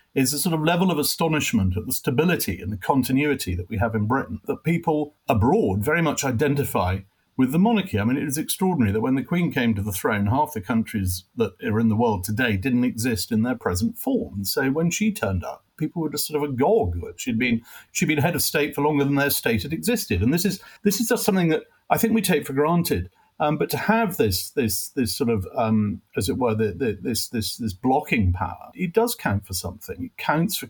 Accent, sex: British, male